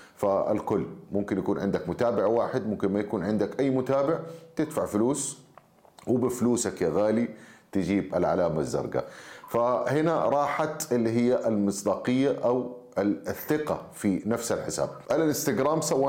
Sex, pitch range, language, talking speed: male, 95-125 Hz, Arabic, 125 wpm